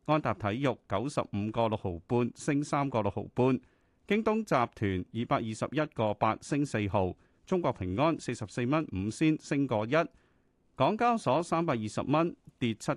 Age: 40-59